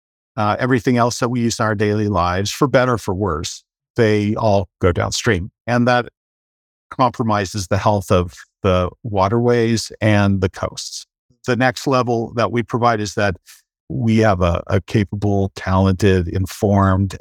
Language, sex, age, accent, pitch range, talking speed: English, male, 50-69, American, 95-115 Hz, 155 wpm